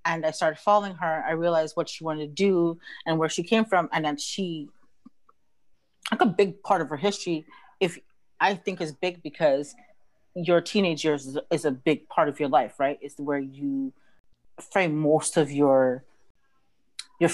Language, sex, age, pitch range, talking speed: English, female, 30-49, 150-190 Hz, 180 wpm